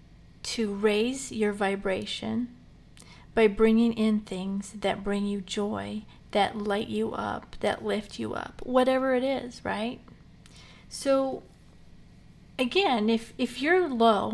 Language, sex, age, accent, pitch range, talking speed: English, female, 40-59, American, 210-245 Hz, 125 wpm